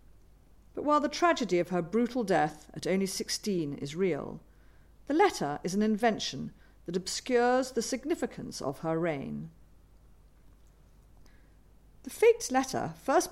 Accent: British